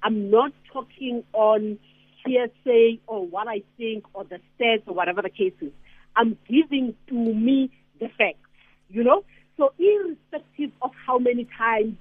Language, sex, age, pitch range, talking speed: English, female, 50-69, 230-300 Hz, 155 wpm